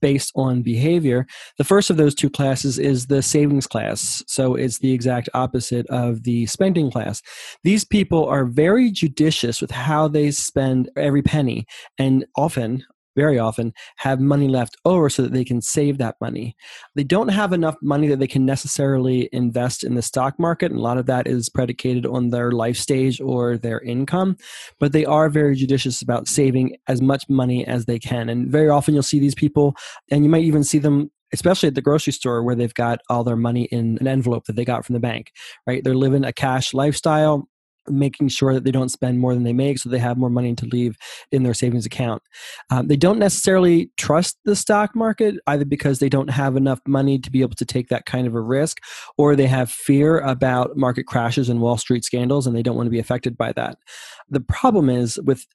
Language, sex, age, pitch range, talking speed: English, male, 20-39, 125-145 Hz, 215 wpm